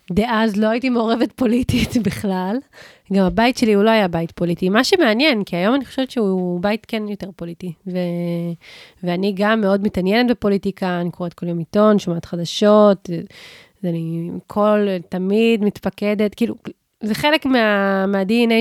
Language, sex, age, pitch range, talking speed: Hebrew, female, 30-49, 175-220 Hz, 150 wpm